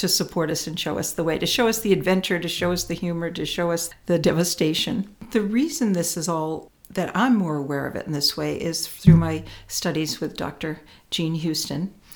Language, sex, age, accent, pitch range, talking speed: English, female, 60-79, American, 160-190 Hz, 220 wpm